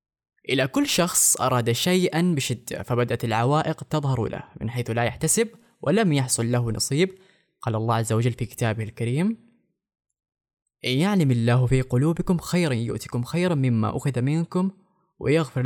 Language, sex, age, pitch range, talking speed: Arabic, female, 10-29, 125-170 Hz, 140 wpm